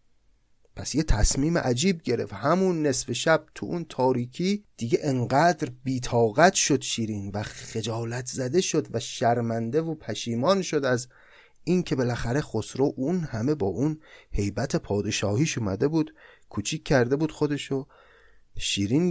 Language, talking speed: Persian, 135 wpm